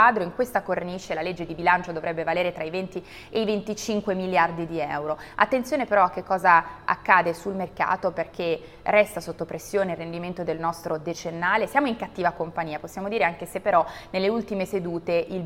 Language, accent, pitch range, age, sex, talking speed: Italian, native, 165-205 Hz, 20-39, female, 185 wpm